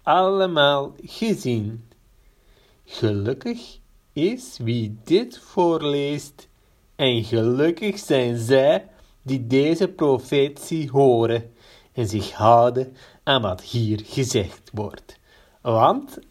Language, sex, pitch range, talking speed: Dutch, male, 115-165 Hz, 90 wpm